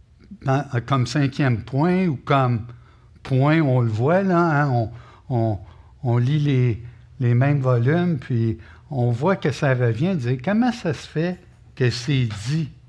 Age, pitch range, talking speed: 60-79, 115-165 Hz, 165 wpm